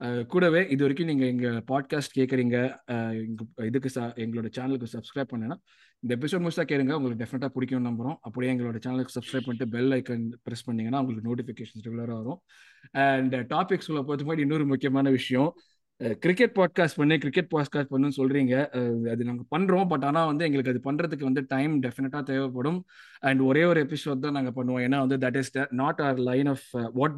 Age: 20-39